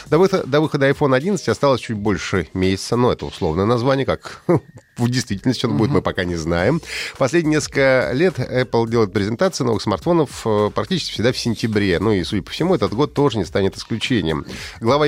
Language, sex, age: Russian, male, 30-49